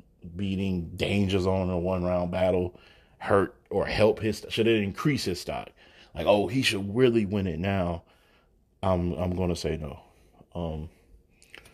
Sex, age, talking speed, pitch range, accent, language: male, 30-49, 160 wpm, 90-105 Hz, American, English